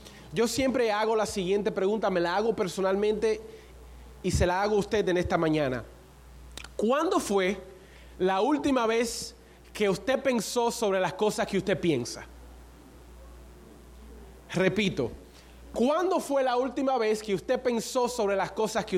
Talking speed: 145 wpm